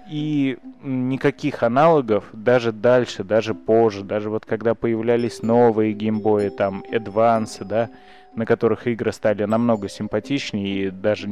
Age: 20-39